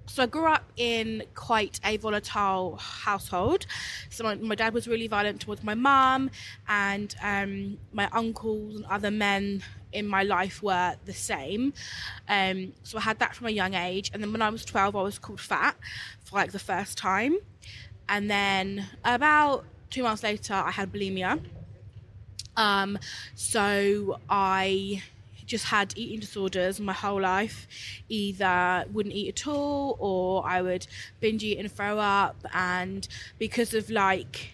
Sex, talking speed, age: female, 160 wpm, 20-39